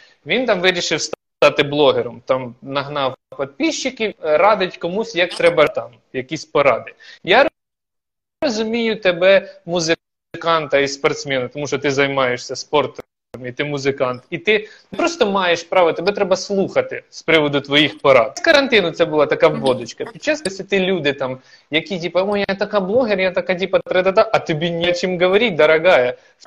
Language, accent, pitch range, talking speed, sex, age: Ukrainian, native, 155-220 Hz, 150 wpm, male, 20-39